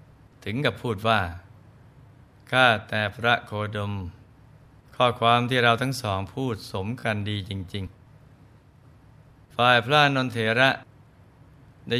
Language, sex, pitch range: Thai, male, 105-130 Hz